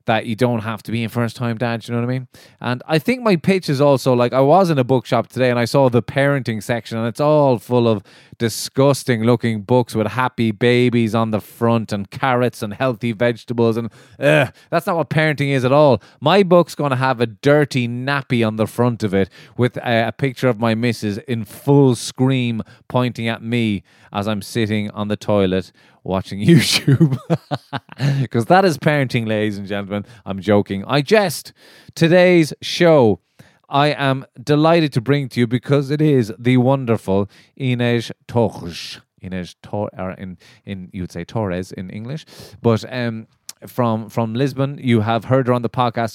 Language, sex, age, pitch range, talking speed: English, male, 20-39, 110-140 Hz, 190 wpm